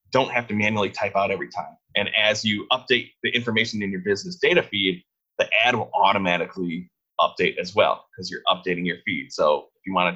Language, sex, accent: English, male, American